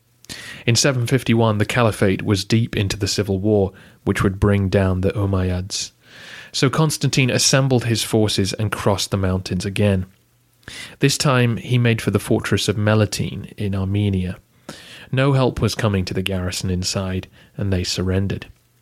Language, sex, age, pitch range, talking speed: English, male, 30-49, 100-120 Hz, 155 wpm